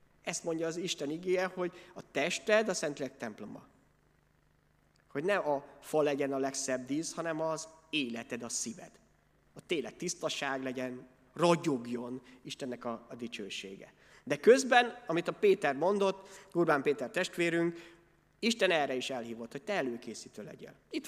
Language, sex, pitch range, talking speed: Hungarian, male, 130-180 Hz, 145 wpm